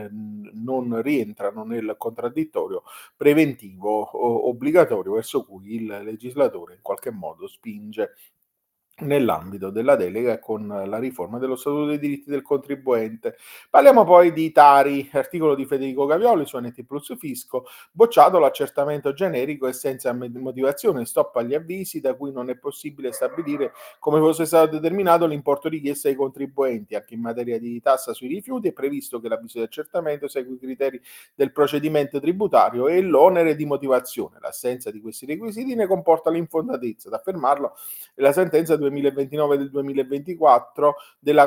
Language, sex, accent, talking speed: Italian, male, native, 145 wpm